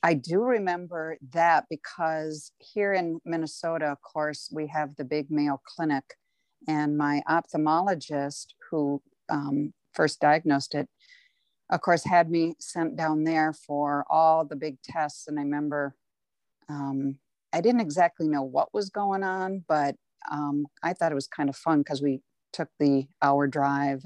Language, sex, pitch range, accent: English, female, 145-165 Hz, American